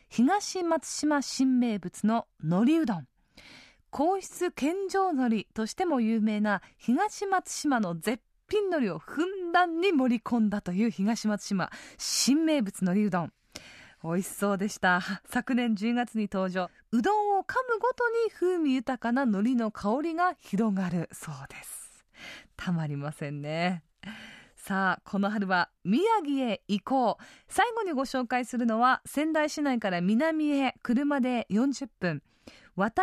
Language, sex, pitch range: Japanese, female, 200-310 Hz